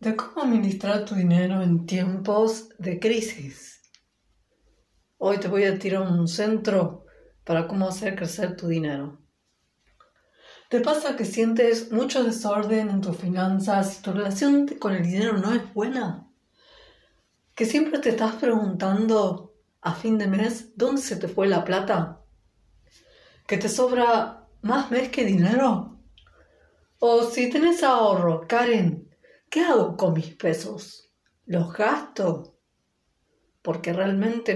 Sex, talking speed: female, 130 wpm